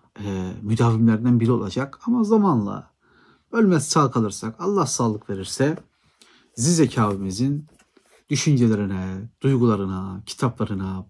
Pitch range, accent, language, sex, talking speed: 105-130 Hz, native, Turkish, male, 85 wpm